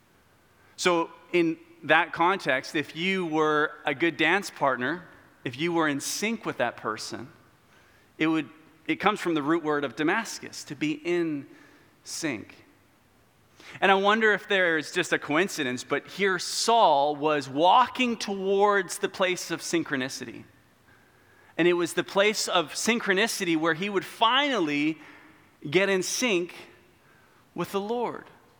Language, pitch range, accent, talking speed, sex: English, 130-195 Hz, American, 145 wpm, male